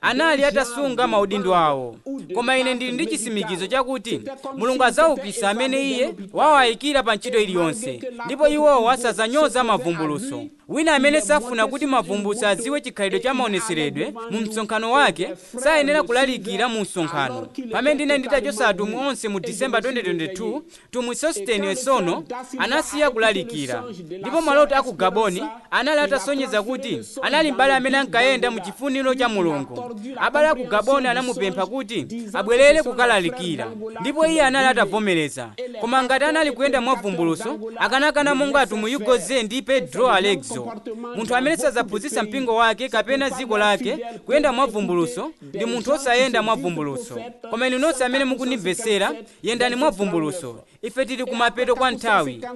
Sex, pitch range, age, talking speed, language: male, 215-280 Hz, 30-49, 130 wpm, French